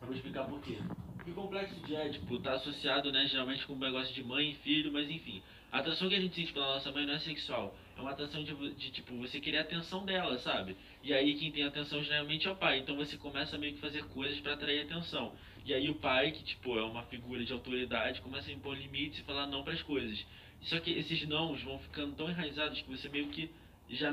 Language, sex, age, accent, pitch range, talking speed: Portuguese, male, 20-39, Brazilian, 125-150 Hz, 245 wpm